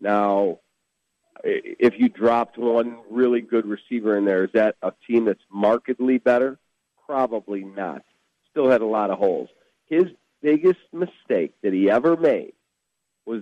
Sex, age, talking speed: male, 50-69, 150 wpm